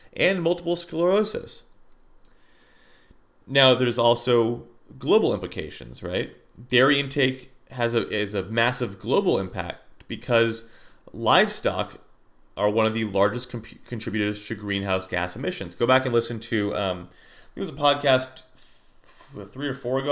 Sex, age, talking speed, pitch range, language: male, 30-49, 145 wpm, 115-150 Hz, English